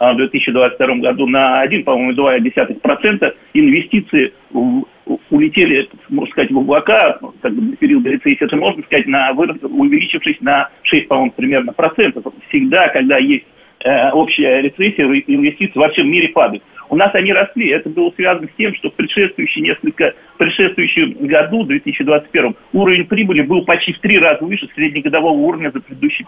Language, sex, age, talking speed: Russian, male, 40-59, 150 wpm